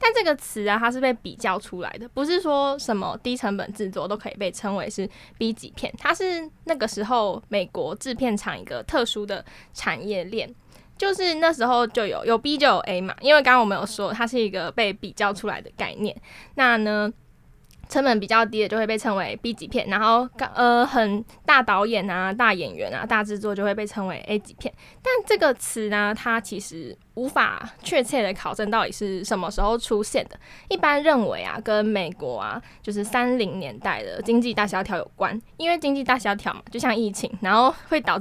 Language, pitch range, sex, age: Chinese, 205-250 Hz, female, 10-29